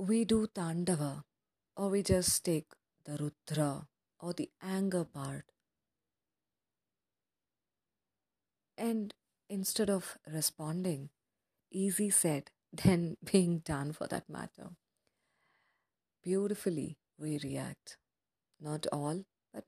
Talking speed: 95 wpm